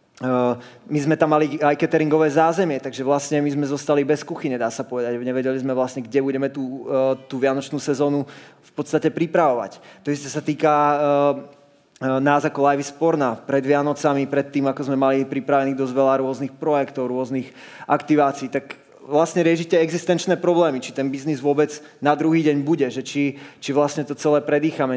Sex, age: male, 20-39